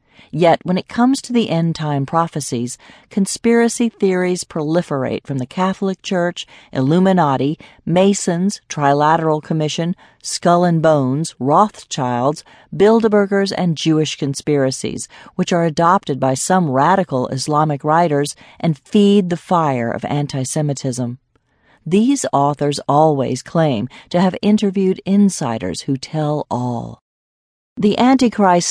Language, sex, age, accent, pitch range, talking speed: English, female, 40-59, American, 140-185 Hz, 115 wpm